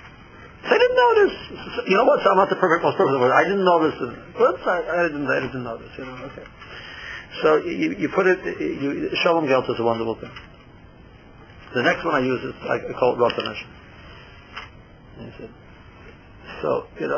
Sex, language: male, English